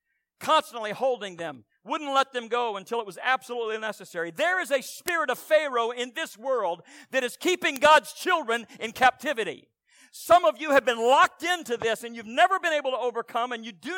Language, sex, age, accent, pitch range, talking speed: English, male, 50-69, American, 215-275 Hz, 200 wpm